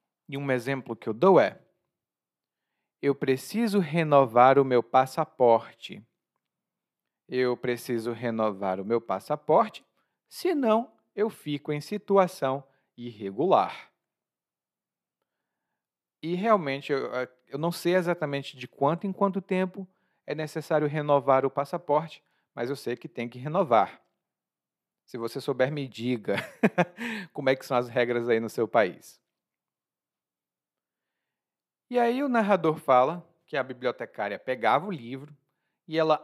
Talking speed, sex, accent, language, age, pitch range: 130 wpm, male, Brazilian, Portuguese, 40-59, 125-180 Hz